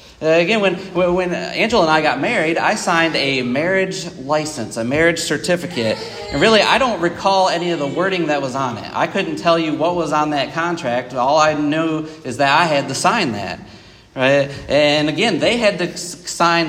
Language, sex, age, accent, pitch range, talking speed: English, male, 40-59, American, 140-175 Hz, 200 wpm